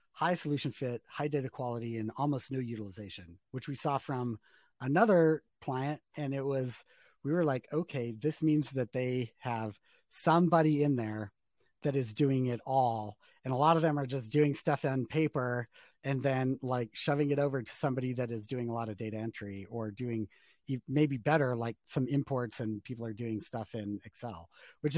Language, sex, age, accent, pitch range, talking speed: English, male, 30-49, American, 115-145 Hz, 185 wpm